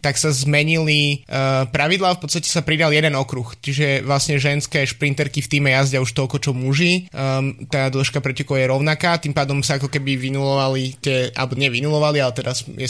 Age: 20-39